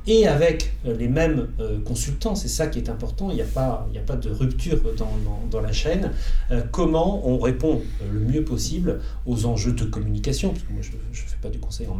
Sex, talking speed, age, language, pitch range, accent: male, 210 wpm, 40-59, French, 115-155 Hz, French